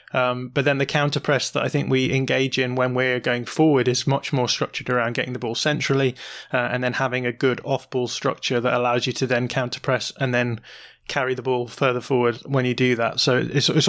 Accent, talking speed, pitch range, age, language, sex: British, 240 wpm, 125-140 Hz, 20-39, English, male